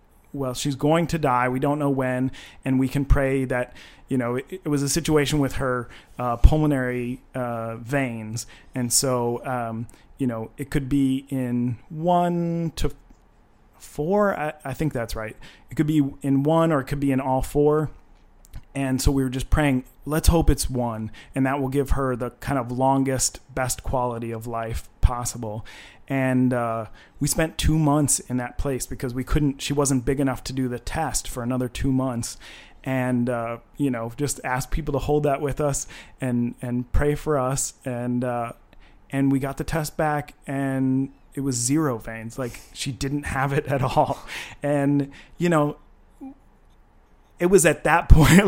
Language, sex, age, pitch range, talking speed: English, male, 30-49, 120-145 Hz, 185 wpm